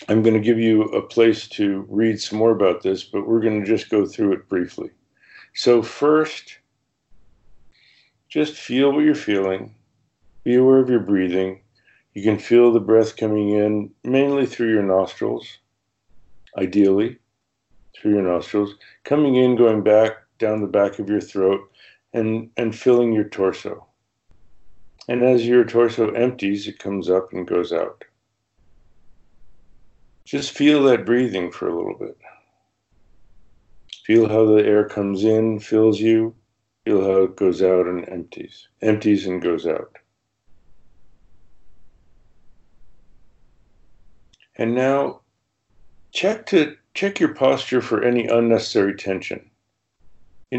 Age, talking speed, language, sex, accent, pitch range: 50-69, 135 wpm, English, male, American, 100-120 Hz